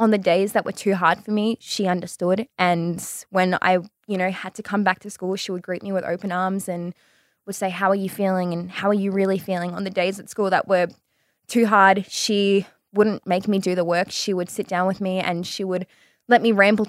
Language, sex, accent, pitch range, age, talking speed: English, female, Australian, 185-210 Hz, 20-39, 250 wpm